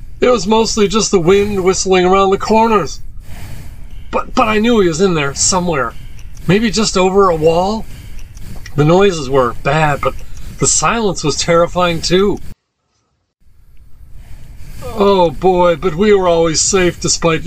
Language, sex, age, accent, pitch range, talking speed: English, male, 40-59, American, 130-190 Hz, 145 wpm